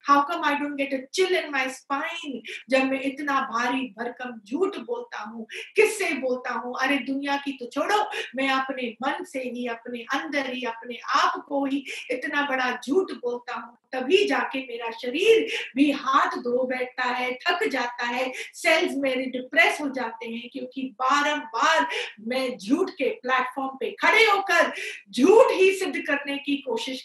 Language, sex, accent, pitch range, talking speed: Hindi, female, native, 250-295 Hz, 80 wpm